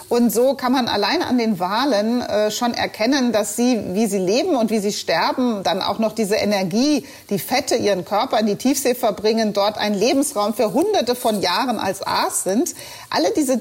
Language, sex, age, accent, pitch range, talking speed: German, female, 40-59, German, 200-245 Hz, 195 wpm